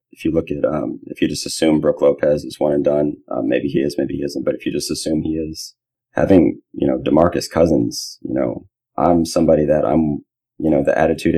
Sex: male